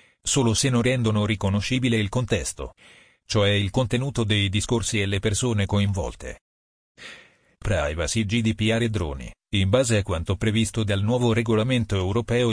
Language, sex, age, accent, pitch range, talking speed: Italian, male, 40-59, native, 105-120 Hz, 140 wpm